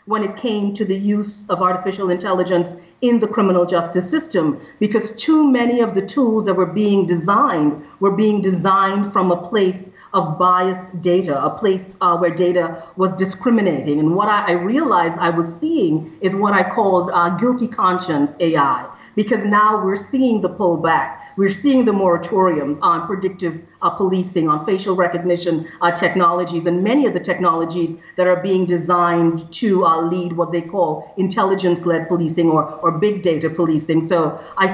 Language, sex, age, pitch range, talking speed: English, female, 40-59, 170-210 Hz, 170 wpm